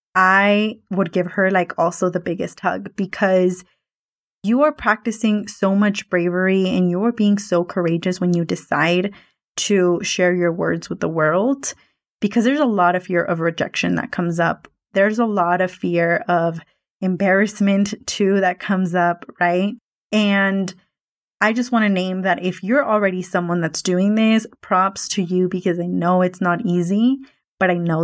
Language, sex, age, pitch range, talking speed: English, female, 20-39, 180-210 Hz, 170 wpm